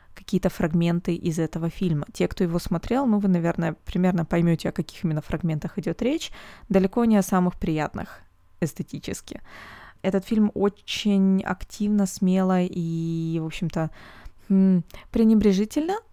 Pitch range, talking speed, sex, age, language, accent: 170-205 Hz, 130 wpm, female, 20-39, Russian, native